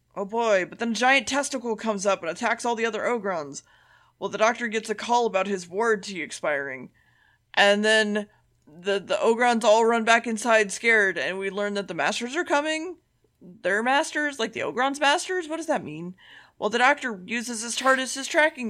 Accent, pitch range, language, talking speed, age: American, 205-260 Hz, English, 195 wpm, 20-39